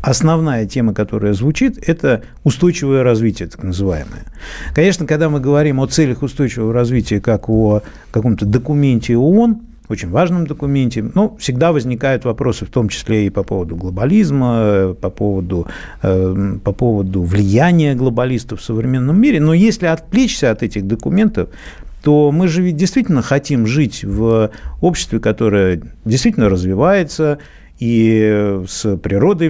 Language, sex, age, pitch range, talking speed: Russian, male, 50-69, 105-150 Hz, 130 wpm